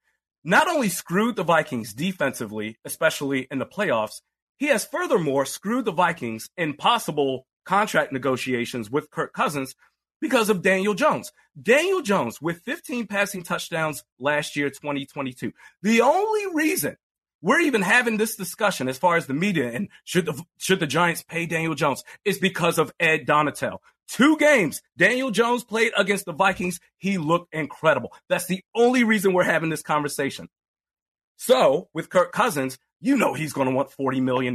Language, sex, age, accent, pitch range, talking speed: English, male, 30-49, American, 140-200 Hz, 165 wpm